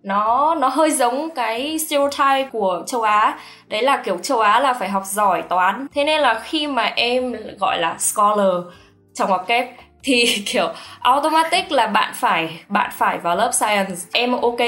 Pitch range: 195-250 Hz